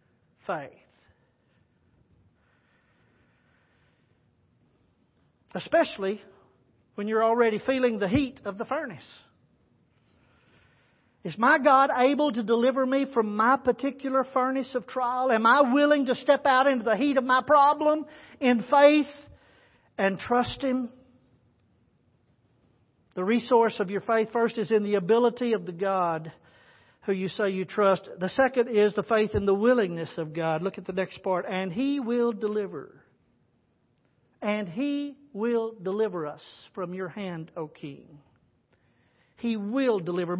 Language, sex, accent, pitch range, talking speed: English, male, American, 185-250 Hz, 135 wpm